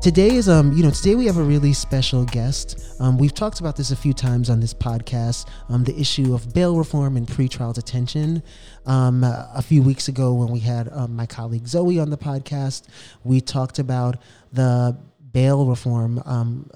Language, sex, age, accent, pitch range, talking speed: English, male, 30-49, American, 125-145 Hz, 200 wpm